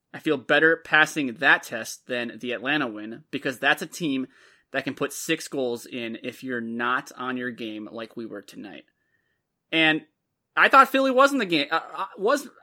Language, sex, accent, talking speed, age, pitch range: English, male, American, 185 wpm, 20-39, 130-195 Hz